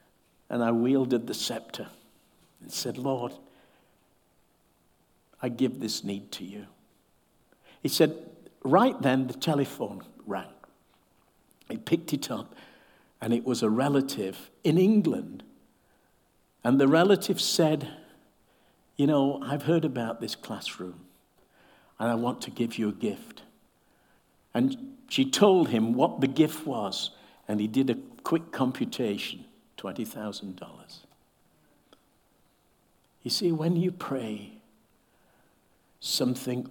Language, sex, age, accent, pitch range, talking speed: English, male, 60-79, British, 115-165 Hz, 120 wpm